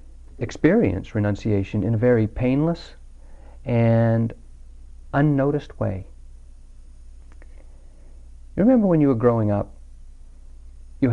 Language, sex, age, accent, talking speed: English, male, 50-69, American, 90 wpm